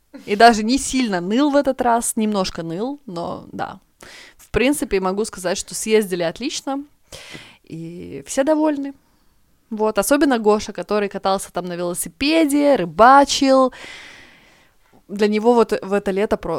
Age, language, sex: 20-39, Russian, female